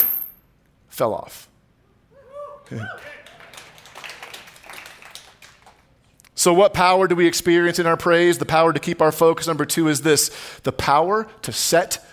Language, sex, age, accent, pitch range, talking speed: English, male, 40-59, American, 150-235 Hz, 125 wpm